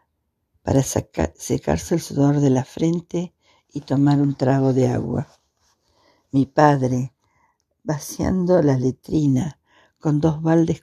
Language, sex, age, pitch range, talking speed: Spanish, female, 60-79, 130-155 Hz, 120 wpm